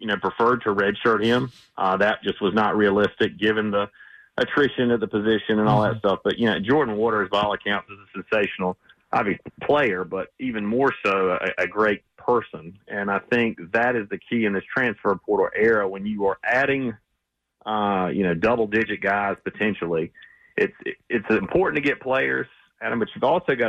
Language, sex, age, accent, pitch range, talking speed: English, male, 40-59, American, 100-115 Hz, 195 wpm